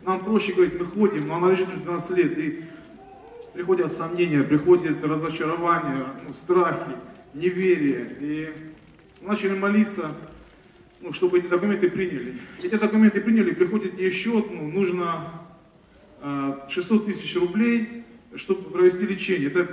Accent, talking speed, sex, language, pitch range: native, 130 wpm, male, Russian, 160-195 Hz